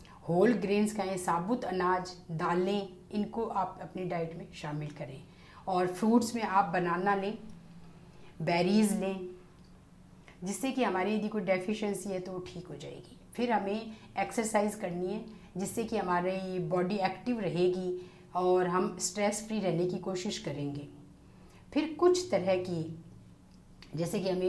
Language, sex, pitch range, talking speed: Hindi, female, 175-200 Hz, 140 wpm